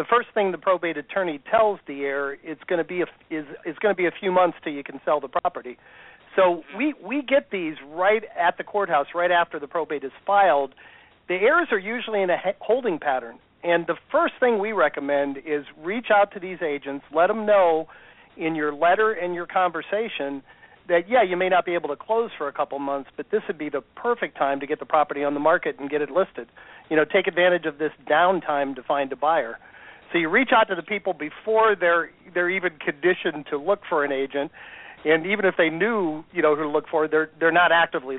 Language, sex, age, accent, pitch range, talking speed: English, male, 40-59, American, 150-190 Hz, 230 wpm